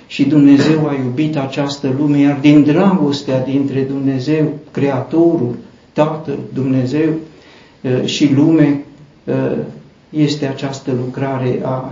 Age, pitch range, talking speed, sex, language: 60-79, 125-145 Hz, 100 wpm, male, Romanian